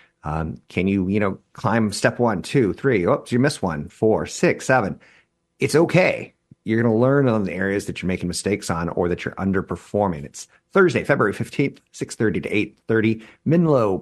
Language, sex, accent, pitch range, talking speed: English, male, American, 90-115 Hz, 180 wpm